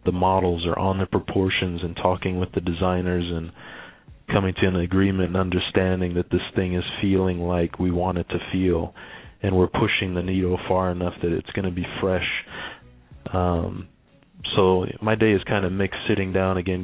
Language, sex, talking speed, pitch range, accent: English, male, 190 wpm, 90-100 Hz, American